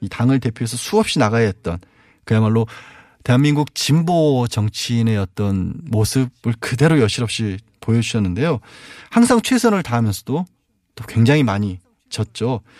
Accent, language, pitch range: native, Korean, 105-145 Hz